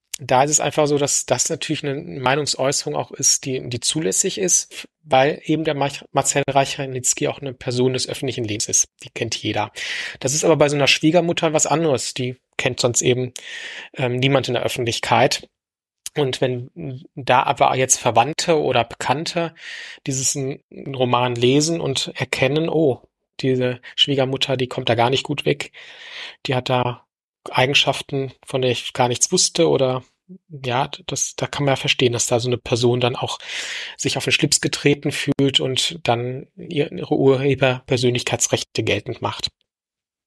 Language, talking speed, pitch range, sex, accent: German, 165 wpm, 125-150 Hz, male, German